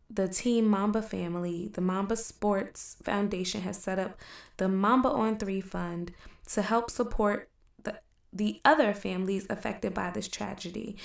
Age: 20-39